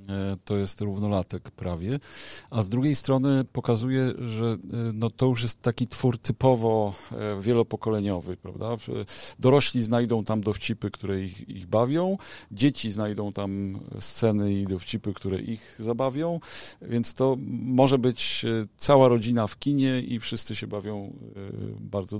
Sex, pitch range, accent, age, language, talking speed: male, 100-125 Hz, native, 40-59, Polish, 125 wpm